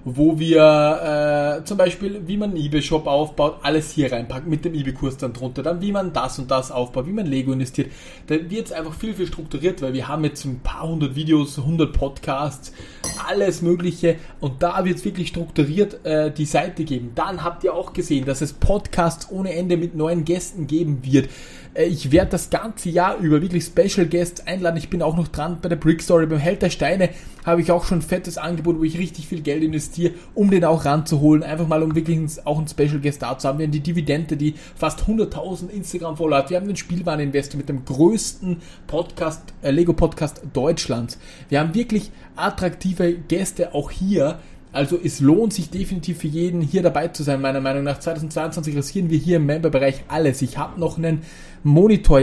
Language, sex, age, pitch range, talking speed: German, male, 30-49, 145-175 Hz, 205 wpm